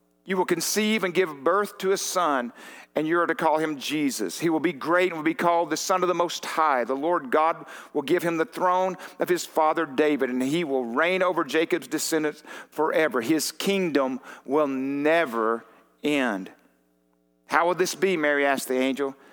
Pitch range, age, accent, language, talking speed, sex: 115-180 Hz, 50-69, American, English, 195 wpm, male